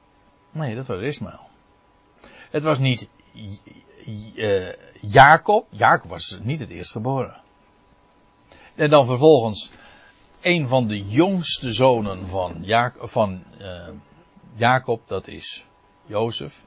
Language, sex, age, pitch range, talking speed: Dutch, male, 60-79, 100-150 Hz, 105 wpm